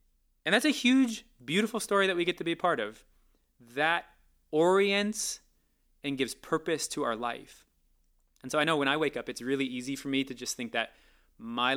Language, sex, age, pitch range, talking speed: English, male, 20-39, 120-155 Hz, 205 wpm